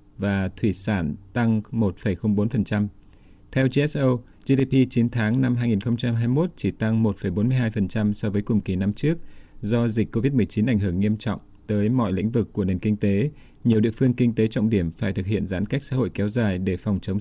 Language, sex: Vietnamese, male